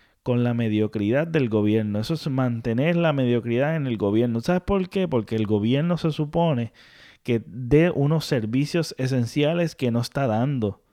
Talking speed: 165 wpm